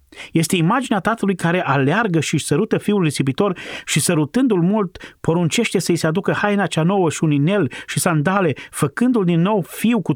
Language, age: Romanian, 30-49